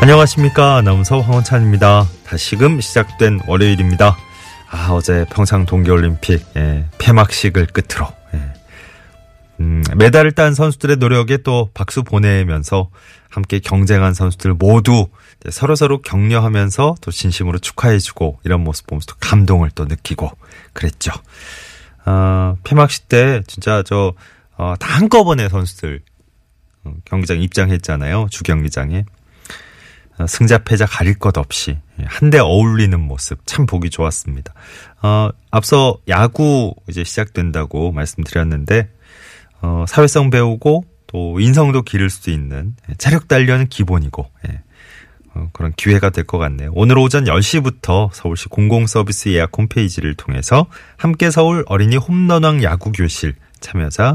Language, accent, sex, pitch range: Korean, native, male, 85-115 Hz